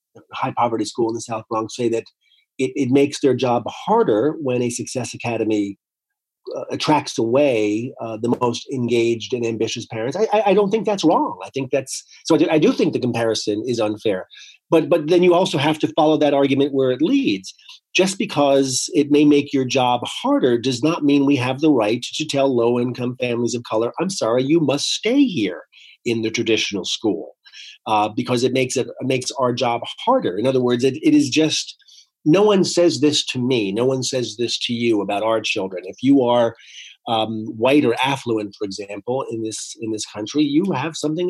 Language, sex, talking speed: English, male, 205 wpm